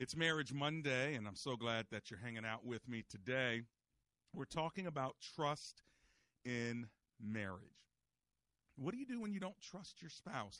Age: 40-59